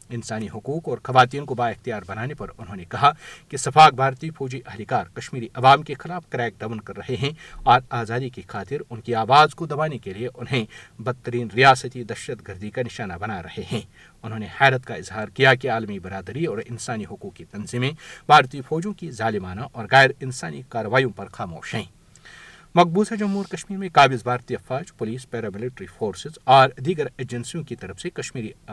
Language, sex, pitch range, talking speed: Urdu, male, 115-145 Hz, 190 wpm